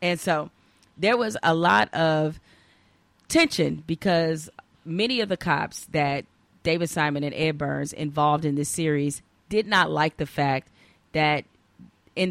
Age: 30-49